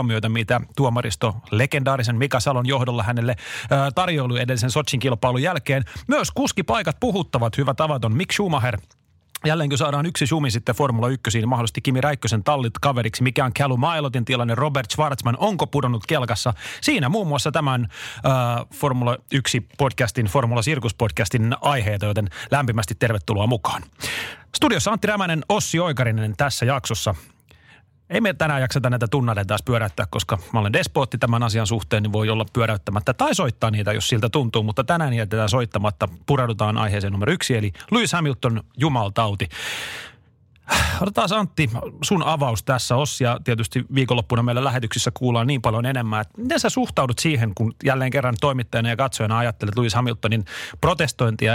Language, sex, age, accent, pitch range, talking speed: Finnish, male, 30-49, native, 115-140 Hz, 150 wpm